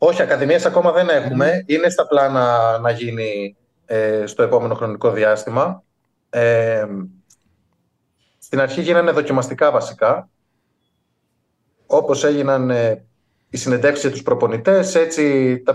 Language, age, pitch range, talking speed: Greek, 30-49, 125-170 Hz, 115 wpm